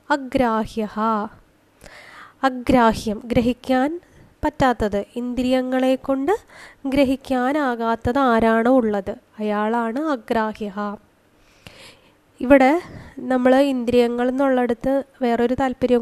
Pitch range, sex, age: 230-270 Hz, female, 20-39